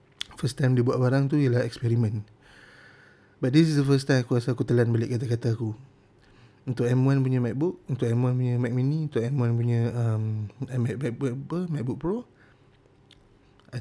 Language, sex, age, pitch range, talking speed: Malay, male, 20-39, 115-130 Hz, 175 wpm